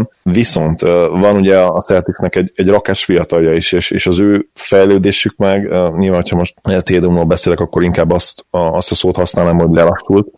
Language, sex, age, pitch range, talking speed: Hungarian, male, 30-49, 85-95 Hz, 180 wpm